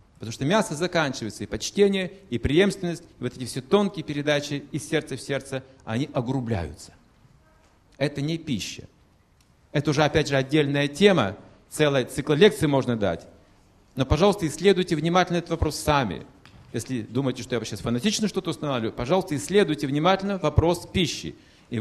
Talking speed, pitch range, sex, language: 150 wpm, 105-150 Hz, male, Russian